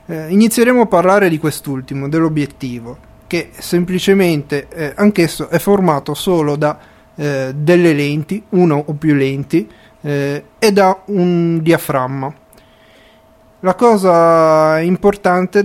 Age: 30-49